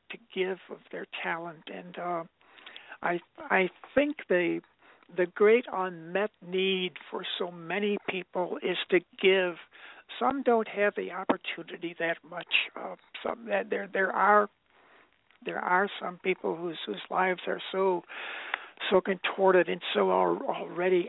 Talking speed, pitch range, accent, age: 140 wpm, 175-205 Hz, American, 60-79